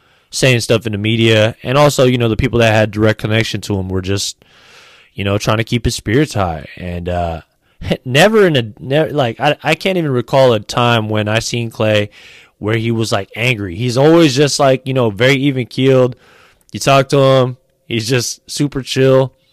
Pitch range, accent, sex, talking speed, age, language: 105-130 Hz, American, male, 205 wpm, 20-39, English